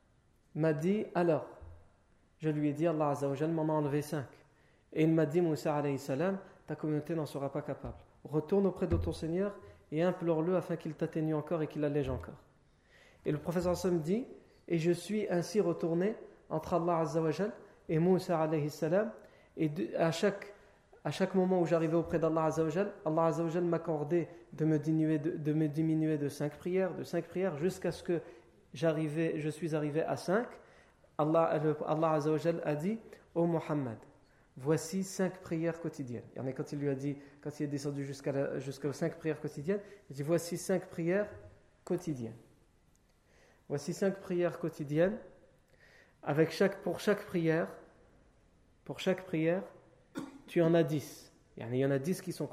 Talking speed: 175 wpm